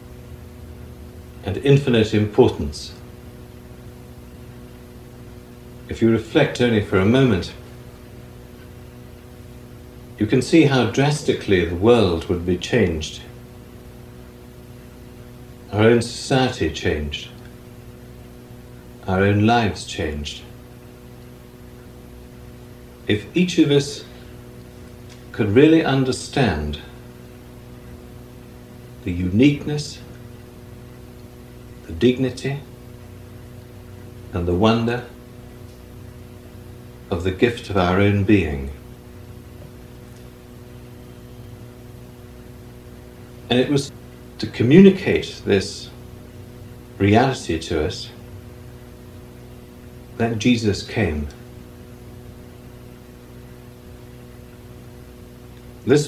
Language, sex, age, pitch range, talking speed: English, male, 60-79, 85-120 Hz, 65 wpm